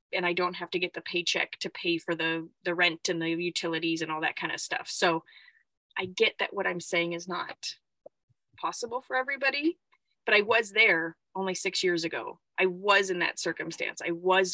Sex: female